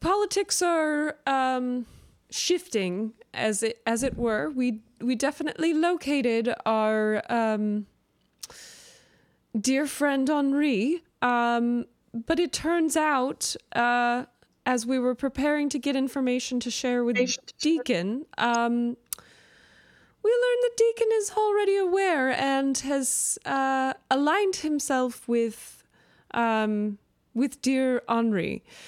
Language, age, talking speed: English, 20-39, 110 wpm